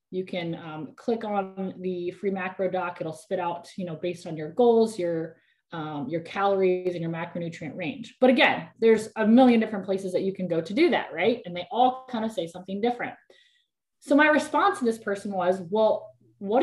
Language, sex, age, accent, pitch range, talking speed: English, female, 20-39, American, 180-260 Hz, 210 wpm